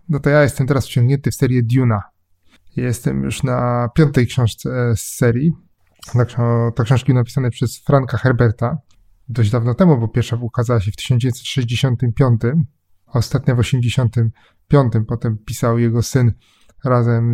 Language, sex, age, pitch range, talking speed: Polish, male, 20-39, 115-145 Hz, 135 wpm